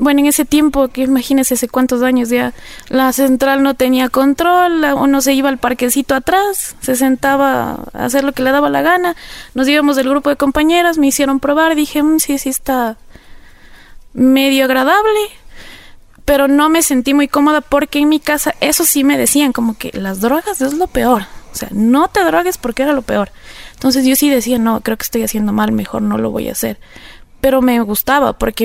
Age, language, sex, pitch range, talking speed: 20-39, Spanish, female, 230-280 Hz, 200 wpm